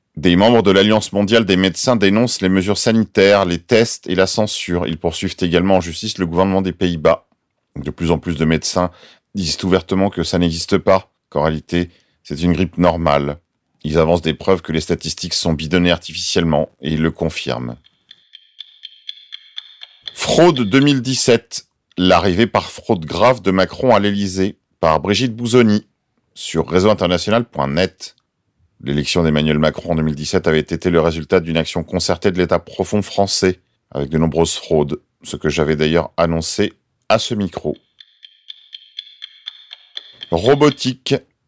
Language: French